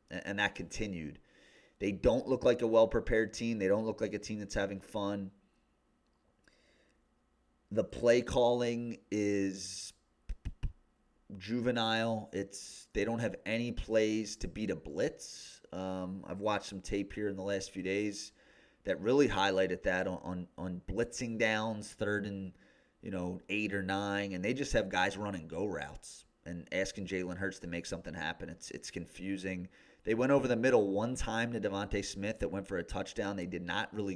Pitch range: 95-110 Hz